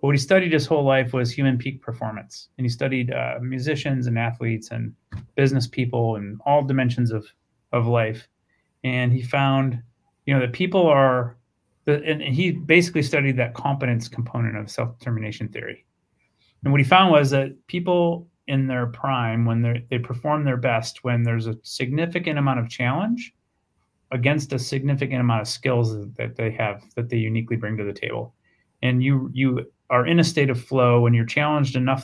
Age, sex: 30-49, male